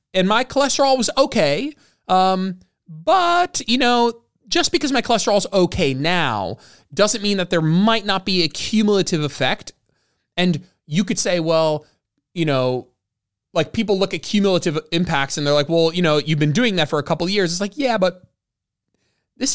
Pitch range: 110-170 Hz